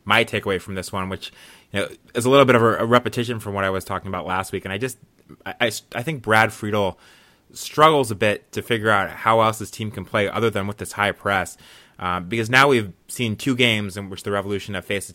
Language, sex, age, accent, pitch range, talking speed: English, male, 20-39, American, 95-105 Hz, 250 wpm